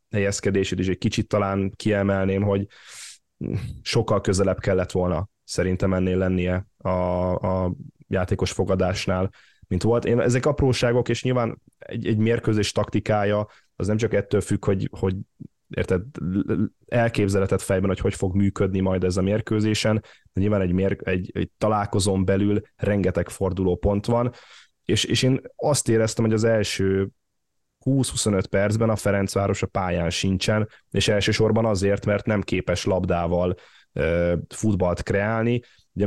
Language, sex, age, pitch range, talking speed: Hungarian, male, 10-29, 95-110 Hz, 135 wpm